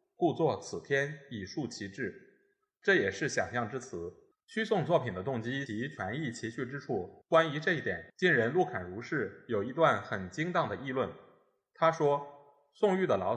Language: Chinese